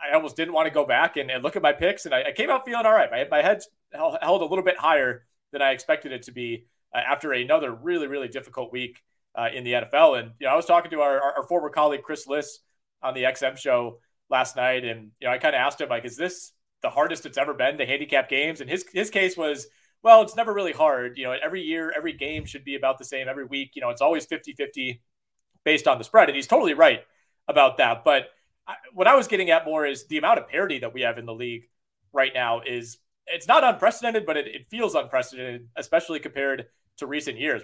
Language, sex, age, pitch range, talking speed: English, male, 30-49, 130-185 Hz, 250 wpm